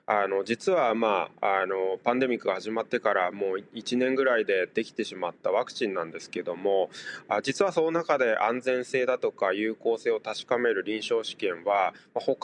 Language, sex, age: Japanese, male, 20-39